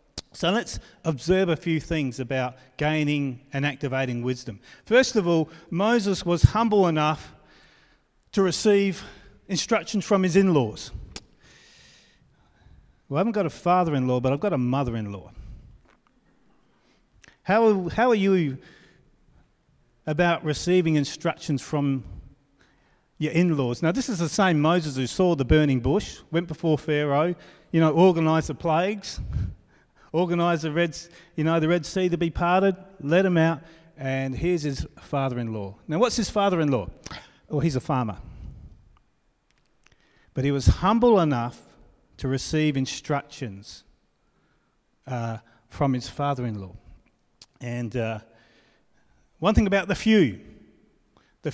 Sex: male